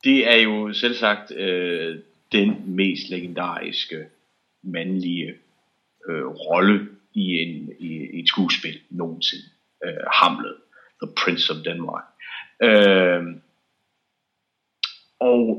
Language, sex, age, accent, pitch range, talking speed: English, male, 30-49, Danish, 95-125 Hz, 100 wpm